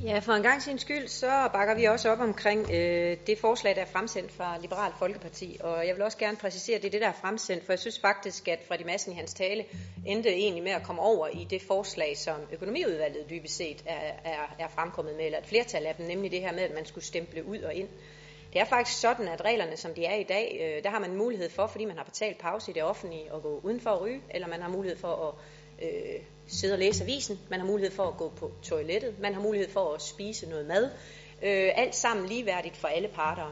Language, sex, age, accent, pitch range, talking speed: Danish, female, 30-49, native, 170-225 Hz, 250 wpm